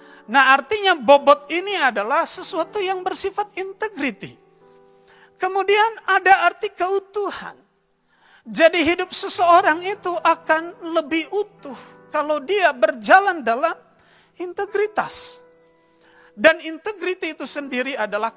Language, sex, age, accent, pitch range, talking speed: Indonesian, male, 40-59, native, 235-355 Hz, 100 wpm